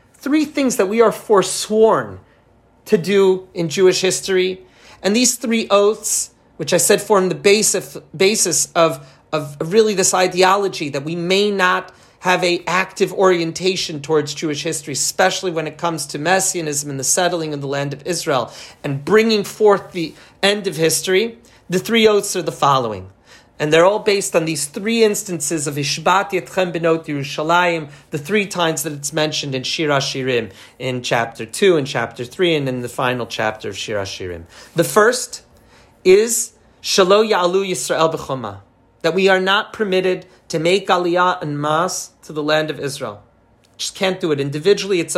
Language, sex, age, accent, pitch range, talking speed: English, male, 40-59, American, 145-195 Hz, 170 wpm